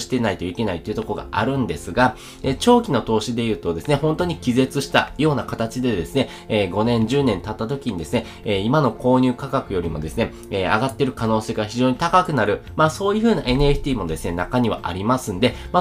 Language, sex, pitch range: Japanese, male, 100-145 Hz